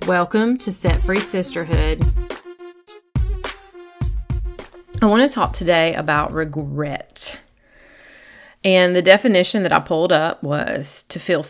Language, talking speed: English, 115 wpm